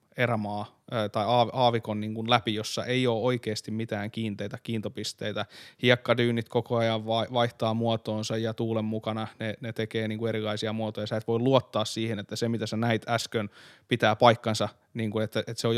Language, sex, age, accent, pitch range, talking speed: Finnish, male, 20-39, native, 110-125 Hz, 180 wpm